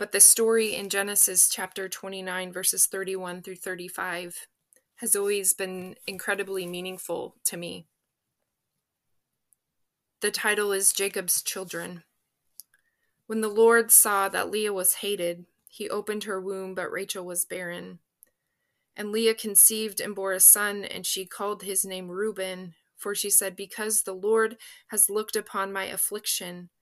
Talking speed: 140 wpm